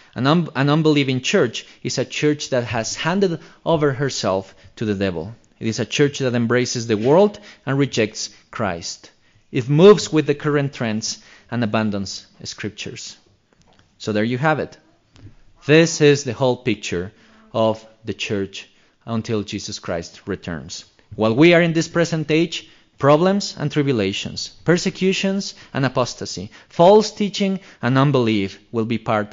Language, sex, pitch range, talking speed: English, male, 105-155 Hz, 145 wpm